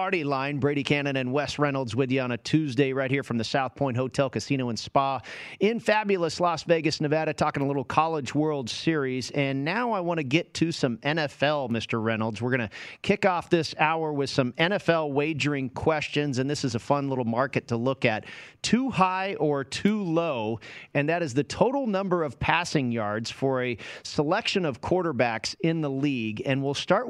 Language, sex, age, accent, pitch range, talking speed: English, male, 40-59, American, 130-165 Hz, 195 wpm